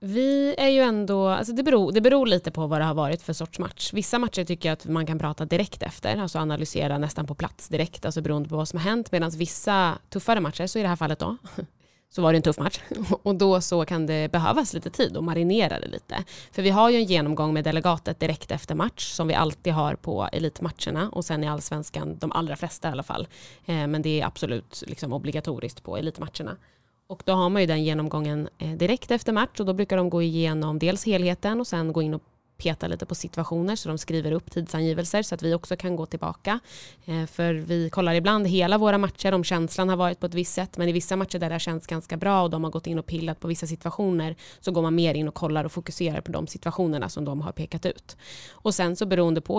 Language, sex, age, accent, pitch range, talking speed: Swedish, female, 20-39, native, 160-190 Hz, 240 wpm